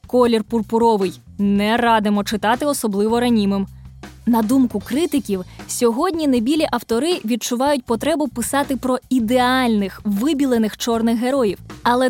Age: 20-39